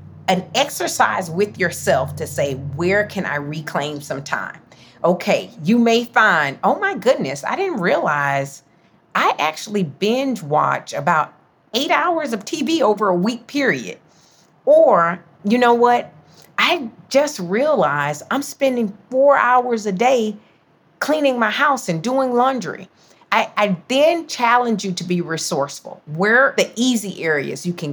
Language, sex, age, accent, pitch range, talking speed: English, female, 40-59, American, 170-245 Hz, 150 wpm